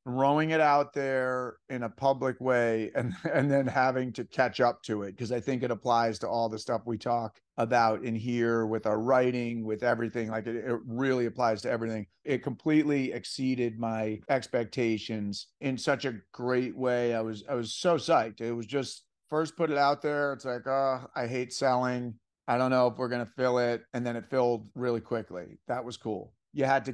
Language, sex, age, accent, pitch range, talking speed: English, male, 40-59, American, 120-140 Hz, 210 wpm